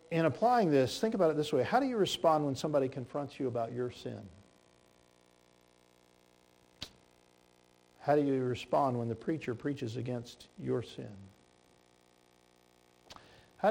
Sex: male